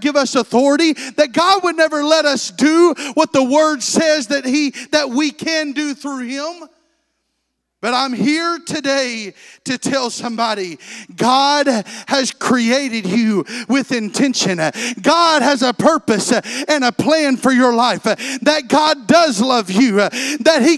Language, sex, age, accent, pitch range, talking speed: English, male, 40-59, American, 245-330 Hz, 150 wpm